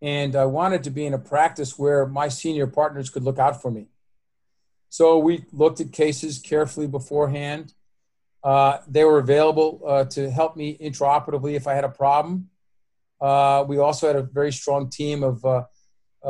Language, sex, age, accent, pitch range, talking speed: English, male, 40-59, American, 130-150 Hz, 175 wpm